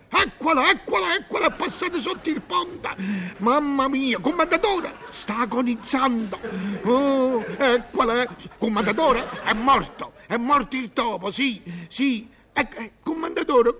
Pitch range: 215-265 Hz